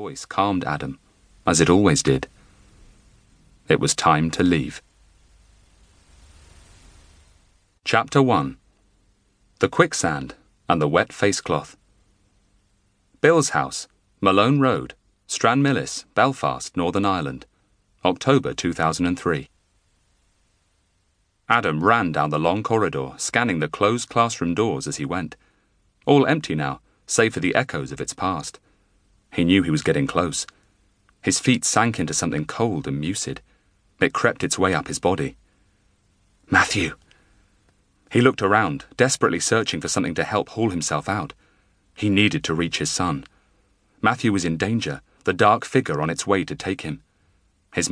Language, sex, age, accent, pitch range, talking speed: English, male, 30-49, British, 85-100 Hz, 135 wpm